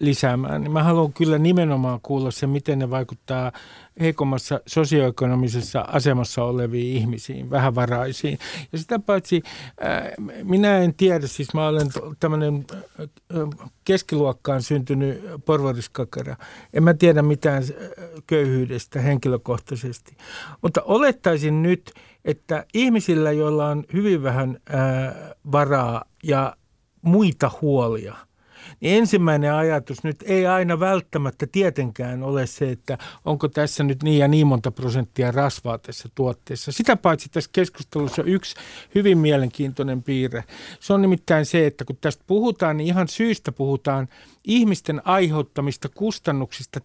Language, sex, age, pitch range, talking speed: Finnish, male, 60-79, 135-170 Hz, 120 wpm